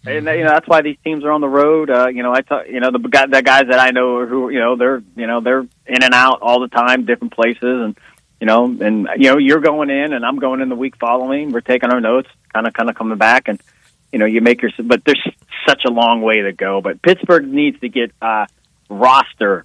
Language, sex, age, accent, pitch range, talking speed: English, male, 30-49, American, 110-130 Hz, 265 wpm